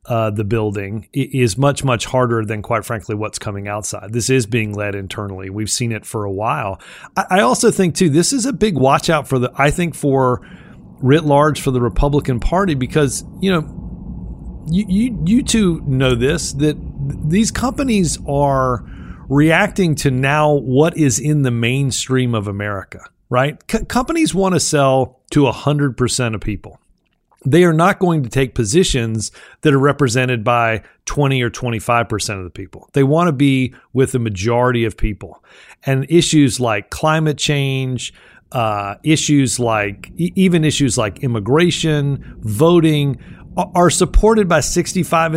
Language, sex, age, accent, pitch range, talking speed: English, male, 40-59, American, 120-160 Hz, 165 wpm